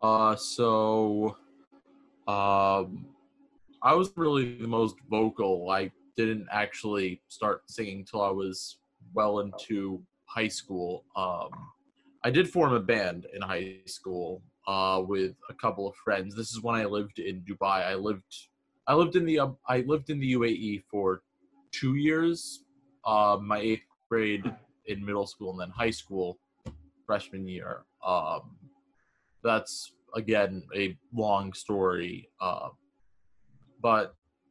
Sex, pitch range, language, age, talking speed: male, 95-115 Hz, English, 20-39, 135 wpm